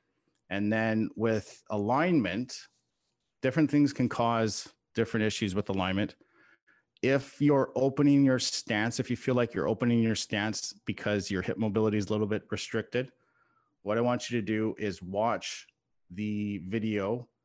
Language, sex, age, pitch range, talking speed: English, male, 30-49, 100-120 Hz, 150 wpm